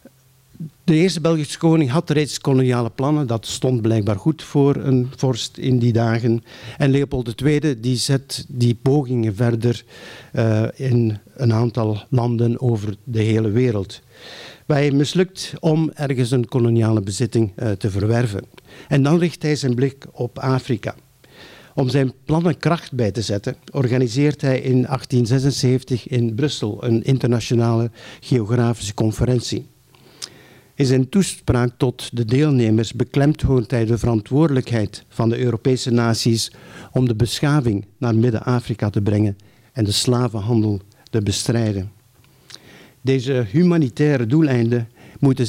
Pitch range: 115-135 Hz